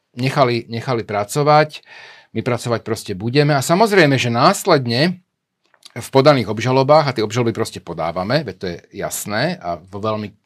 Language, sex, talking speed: Slovak, male, 150 wpm